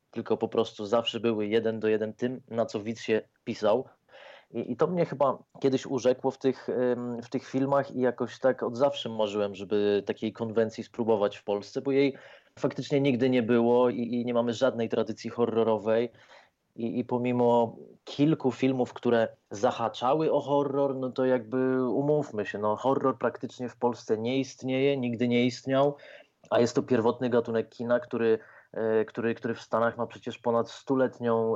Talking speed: 170 wpm